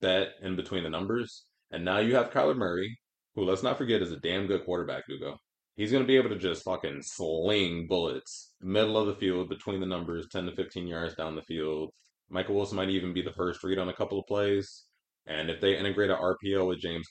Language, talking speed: English, 230 wpm